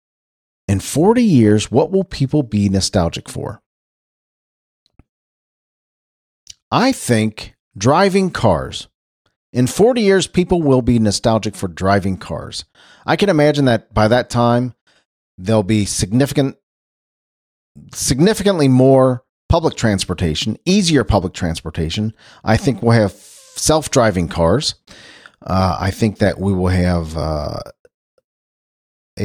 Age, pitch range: 40-59, 95-130 Hz